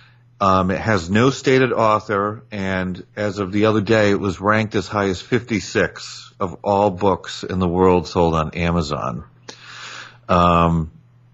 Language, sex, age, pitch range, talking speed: English, male, 40-59, 90-115 Hz, 155 wpm